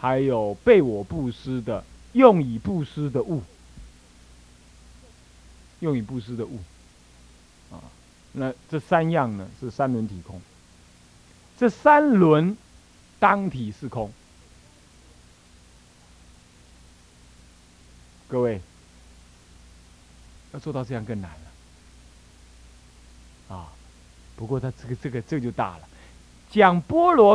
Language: Chinese